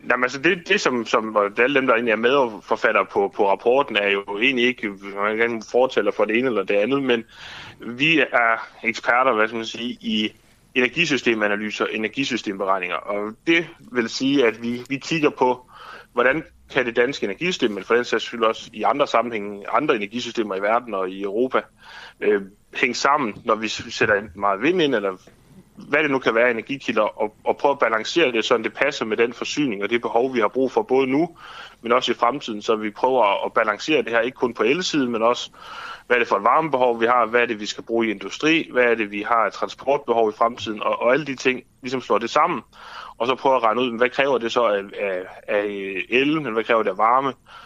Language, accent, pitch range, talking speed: Danish, native, 110-130 Hz, 215 wpm